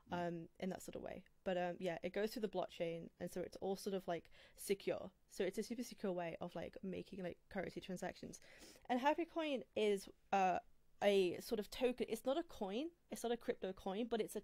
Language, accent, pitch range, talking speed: English, British, 180-220 Hz, 230 wpm